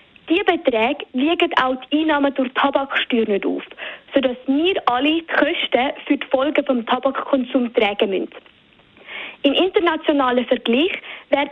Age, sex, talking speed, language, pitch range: 20-39, female, 140 wpm, German, 255-300 Hz